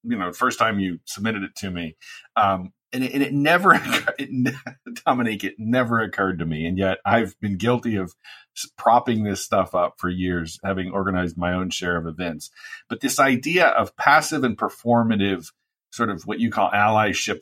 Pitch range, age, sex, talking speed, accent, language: 95-125 Hz, 40-59, male, 180 wpm, American, English